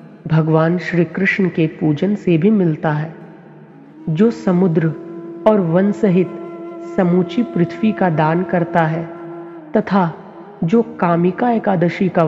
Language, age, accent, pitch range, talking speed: Hindi, 40-59, native, 165-185 Hz, 120 wpm